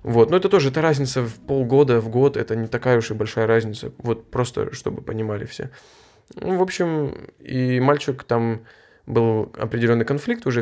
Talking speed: 180 wpm